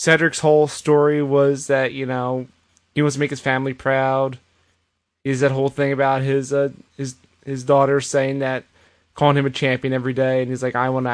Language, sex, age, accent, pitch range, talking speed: English, male, 20-39, American, 115-155 Hz, 205 wpm